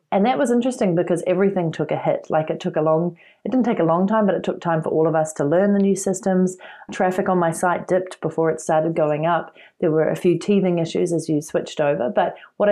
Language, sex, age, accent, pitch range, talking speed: English, female, 30-49, Australian, 155-185 Hz, 260 wpm